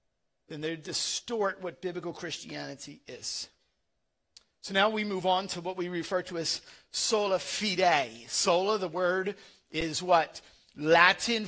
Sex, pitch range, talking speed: male, 170-210 Hz, 135 wpm